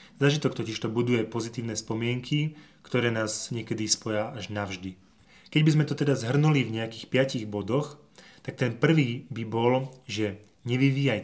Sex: male